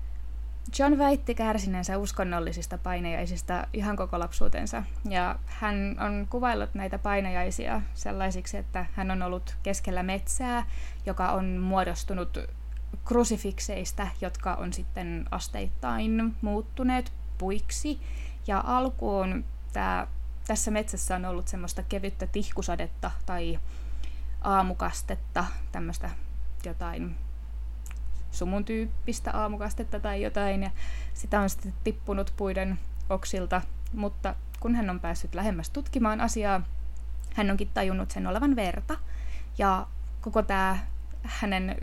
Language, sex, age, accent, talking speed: Finnish, female, 20-39, native, 110 wpm